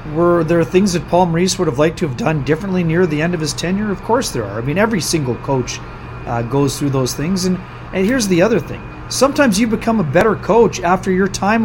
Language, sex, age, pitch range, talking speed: English, male, 40-59, 145-200 Hz, 245 wpm